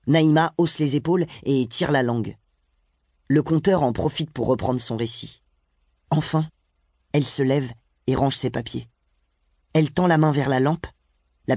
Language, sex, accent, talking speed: French, male, French, 165 wpm